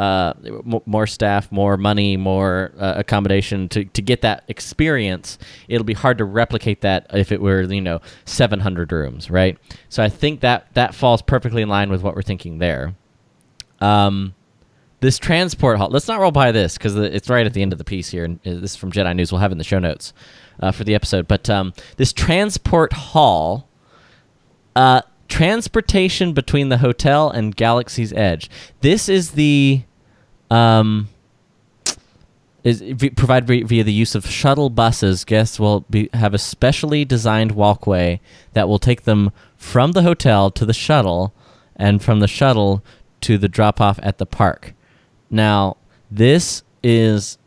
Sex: male